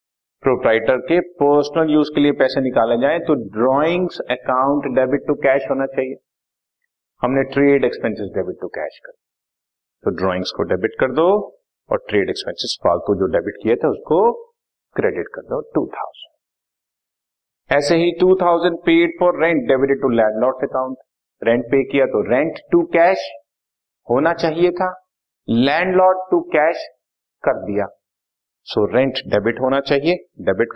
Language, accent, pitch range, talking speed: Hindi, native, 135-185 Hz, 145 wpm